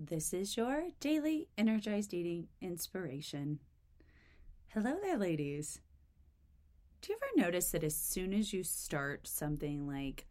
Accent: American